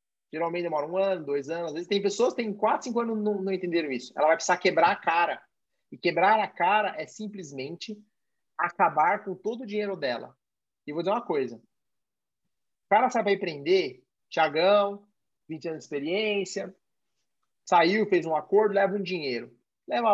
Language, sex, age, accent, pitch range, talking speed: Portuguese, male, 30-49, Brazilian, 160-205 Hz, 185 wpm